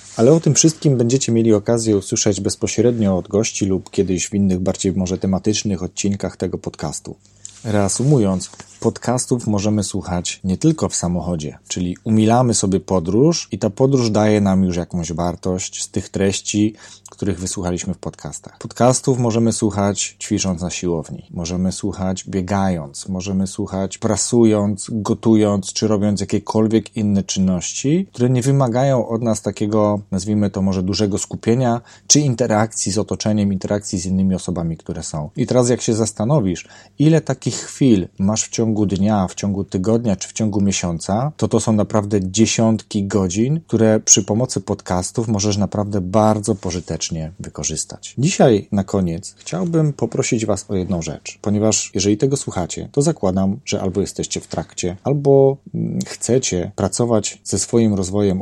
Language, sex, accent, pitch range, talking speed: Polish, male, native, 95-115 Hz, 155 wpm